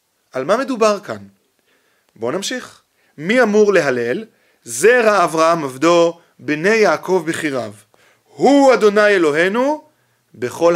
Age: 30-49